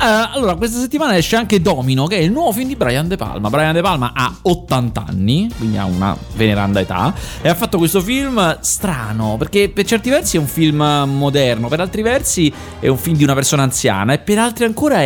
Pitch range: 110-160 Hz